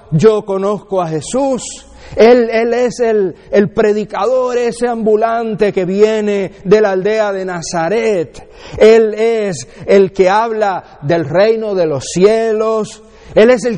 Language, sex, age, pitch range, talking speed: English, male, 50-69, 155-220 Hz, 140 wpm